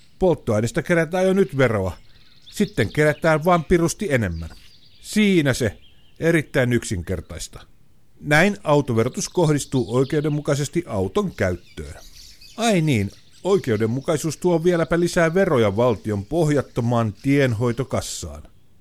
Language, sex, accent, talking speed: Finnish, male, native, 95 wpm